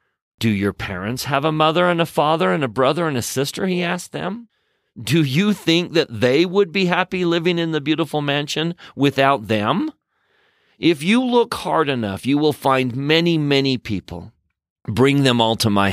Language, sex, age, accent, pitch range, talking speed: English, male, 40-59, American, 110-150 Hz, 185 wpm